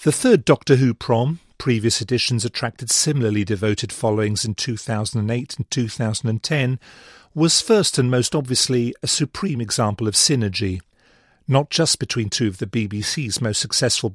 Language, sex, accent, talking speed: English, male, British, 145 wpm